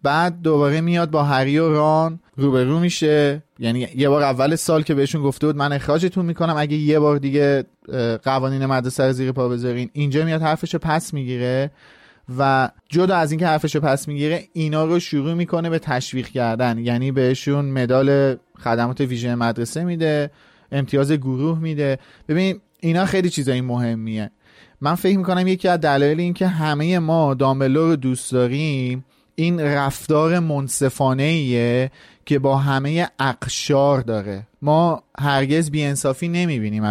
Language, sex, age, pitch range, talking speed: Persian, male, 30-49, 125-155 Hz, 145 wpm